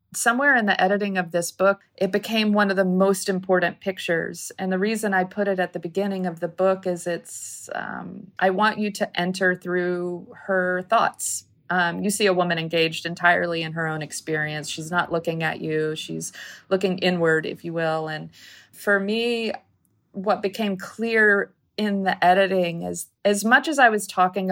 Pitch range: 165-195 Hz